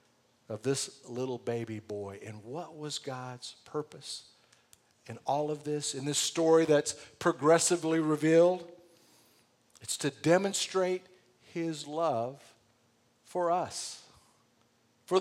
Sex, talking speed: male, 110 wpm